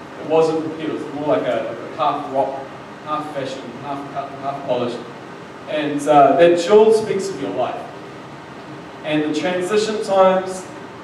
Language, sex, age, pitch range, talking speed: English, male, 30-49, 140-160 Hz, 170 wpm